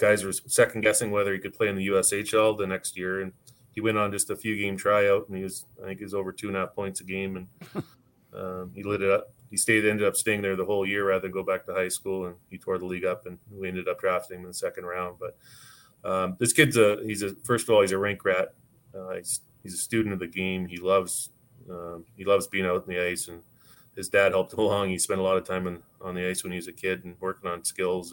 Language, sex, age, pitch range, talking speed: English, male, 30-49, 90-105 Hz, 280 wpm